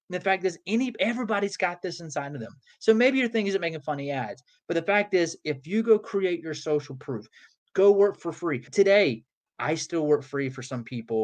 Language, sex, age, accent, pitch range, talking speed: English, male, 20-39, American, 150-205 Hz, 220 wpm